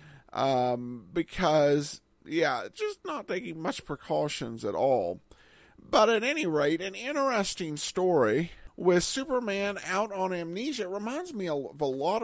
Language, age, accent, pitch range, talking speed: English, 50-69, American, 145-210 Hz, 130 wpm